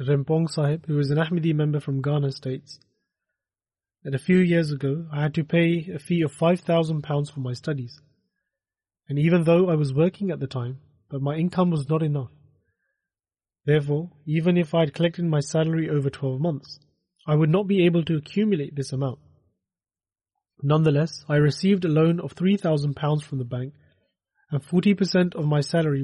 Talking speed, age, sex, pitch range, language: 175 wpm, 30-49, male, 140-170 Hz, English